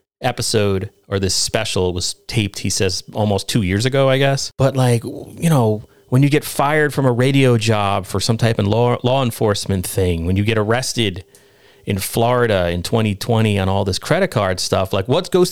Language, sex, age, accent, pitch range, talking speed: English, male, 30-49, American, 110-155 Hz, 195 wpm